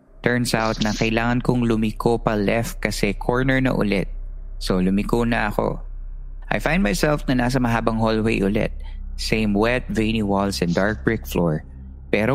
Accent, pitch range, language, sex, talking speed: native, 105-135 Hz, Filipino, male, 160 wpm